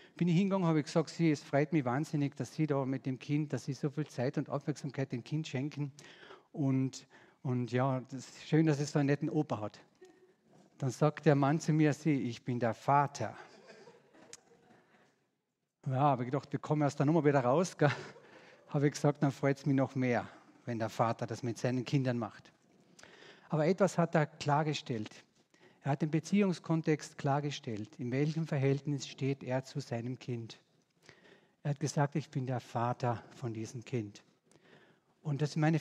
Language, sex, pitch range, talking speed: German, male, 130-155 Hz, 185 wpm